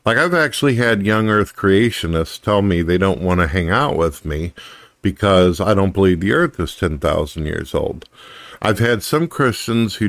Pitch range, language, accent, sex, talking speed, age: 85-110 Hz, English, American, male, 190 wpm, 50-69